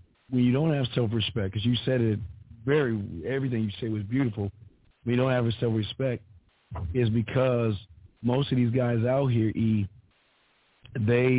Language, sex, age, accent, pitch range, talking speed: English, male, 40-59, American, 110-140 Hz, 155 wpm